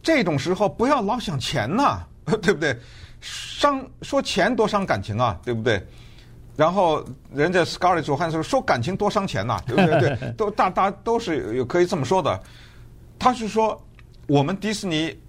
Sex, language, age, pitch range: male, Chinese, 50-69, 120-180 Hz